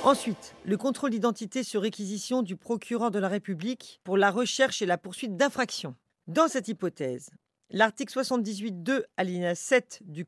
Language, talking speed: French, 150 wpm